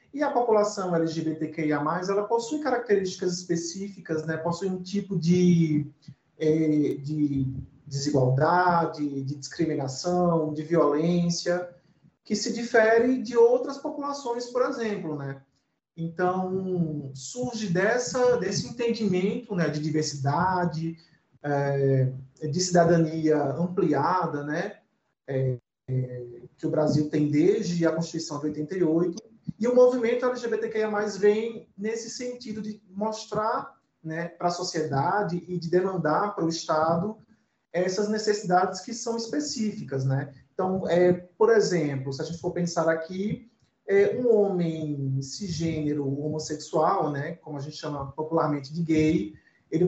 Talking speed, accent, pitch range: 115 wpm, Brazilian, 155-205 Hz